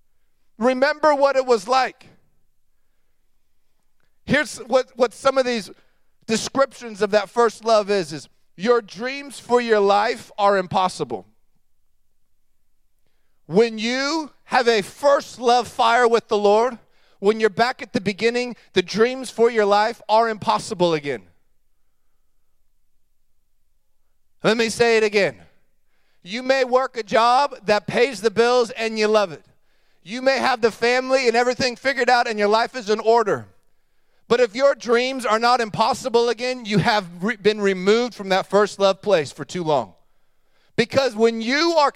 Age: 40-59